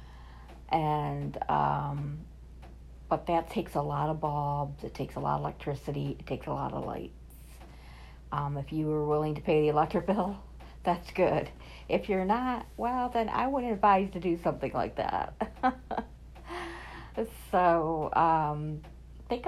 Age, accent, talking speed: 50-69, American, 150 wpm